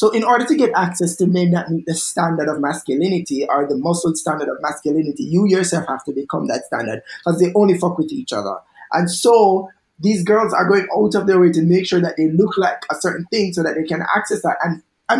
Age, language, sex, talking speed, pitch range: 20-39, English, male, 245 wpm, 150-190 Hz